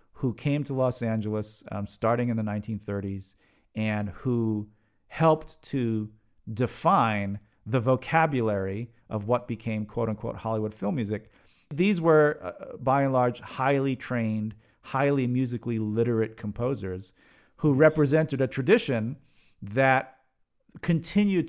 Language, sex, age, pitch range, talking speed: English, male, 40-59, 105-135 Hz, 115 wpm